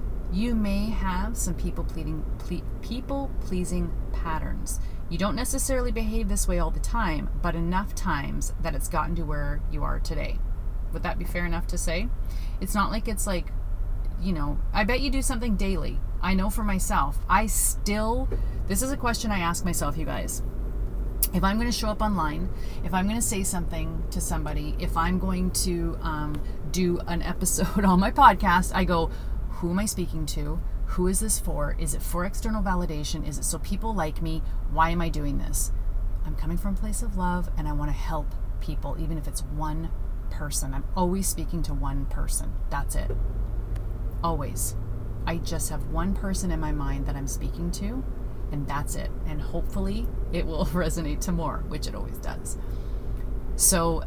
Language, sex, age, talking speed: English, female, 30-49, 185 wpm